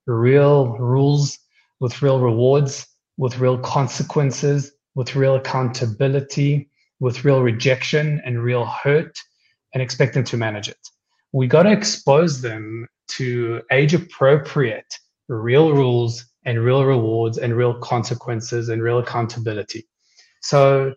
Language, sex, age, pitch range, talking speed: English, male, 20-39, 120-145 Hz, 125 wpm